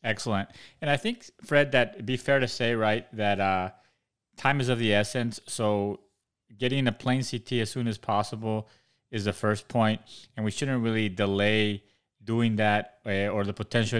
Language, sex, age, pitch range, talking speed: English, male, 30-49, 100-115 Hz, 185 wpm